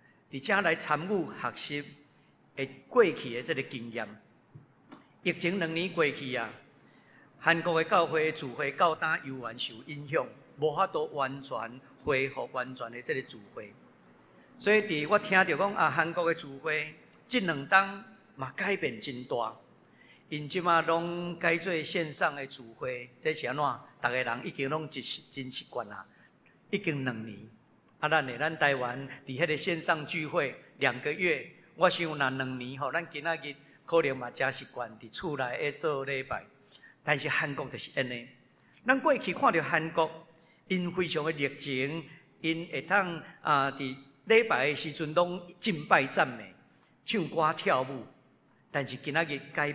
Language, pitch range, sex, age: Chinese, 130-170 Hz, male, 50-69